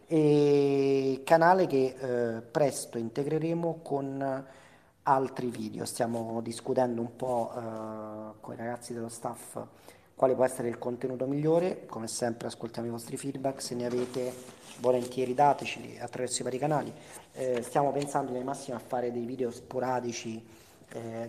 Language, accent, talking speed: Italian, native, 145 wpm